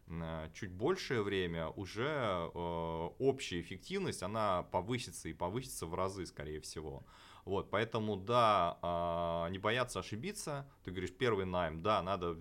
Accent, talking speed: native, 130 wpm